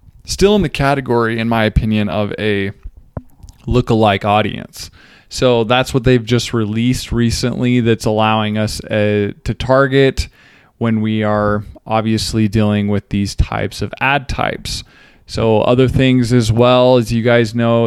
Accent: American